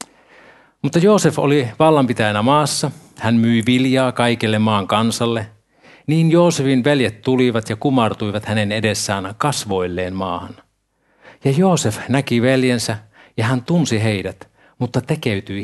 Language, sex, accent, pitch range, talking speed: Finnish, male, native, 105-140 Hz, 120 wpm